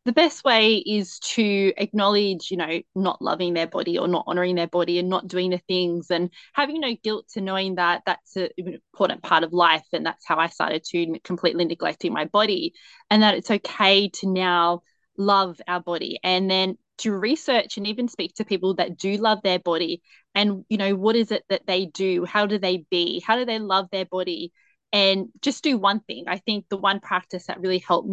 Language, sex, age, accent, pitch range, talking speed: English, female, 20-39, Australian, 180-210 Hz, 220 wpm